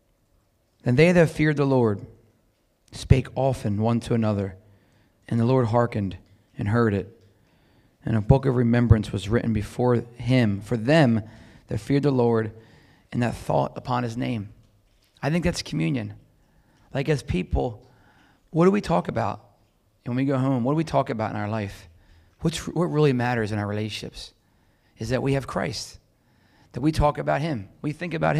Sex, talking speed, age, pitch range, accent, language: male, 175 wpm, 30-49, 110-145 Hz, American, English